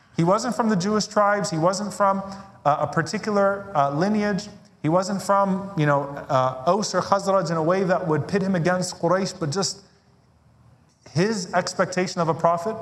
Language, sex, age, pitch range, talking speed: English, male, 30-49, 125-170 Hz, 185 wpm